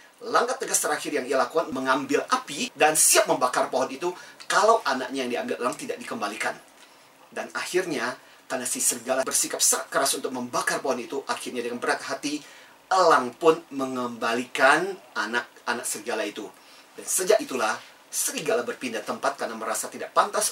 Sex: male